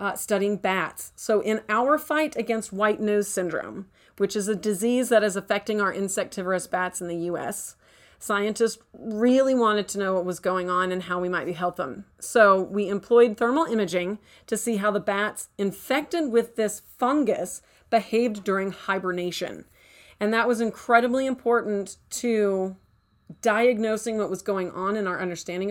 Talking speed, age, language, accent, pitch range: 165 wpm, 40-59, English, American, 190-230 Hz